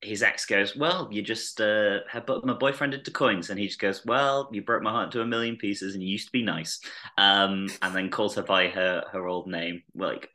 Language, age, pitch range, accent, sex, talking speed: English, 20-39, 95-115 Hz, British, male, 250 wpm